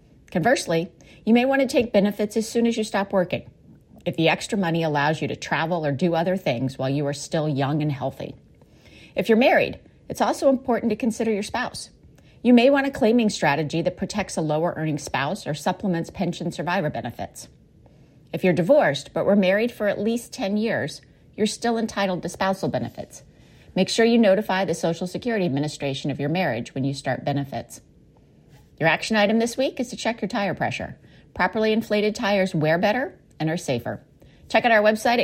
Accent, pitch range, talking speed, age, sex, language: American, 145-210 Hz, 190 wpm, 30-49, female, English